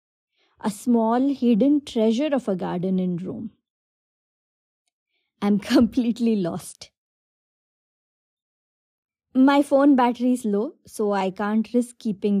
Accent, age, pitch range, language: Indian, 20-39, 200-265 Hz, English